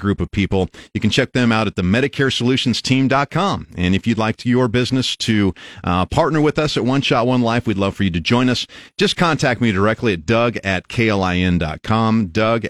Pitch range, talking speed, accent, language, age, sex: 105-145 Hz, 210 wpm, American, English, 40-59, male